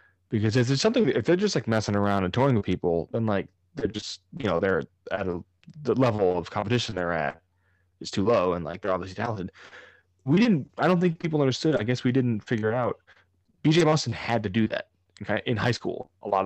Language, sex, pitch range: English, male, 95-120 Hz